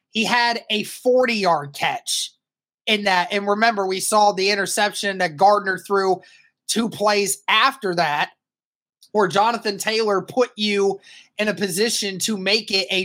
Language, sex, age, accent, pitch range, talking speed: English, male, 20-39, American, 190-225 Hz, 150 wpm